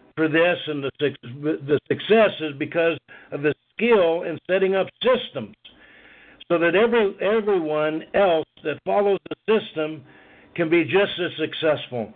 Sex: male